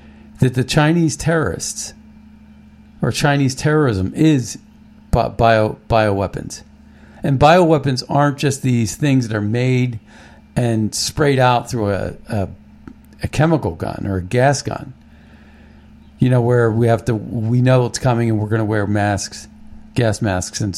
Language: English